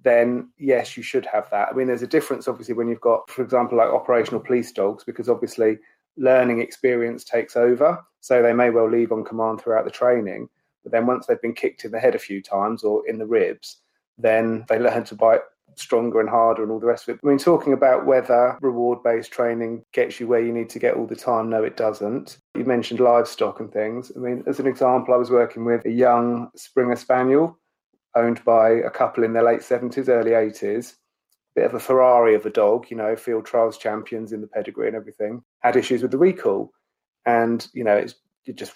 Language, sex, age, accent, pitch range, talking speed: English, male, 30-49, British, 115-130 Hz, 220 wpm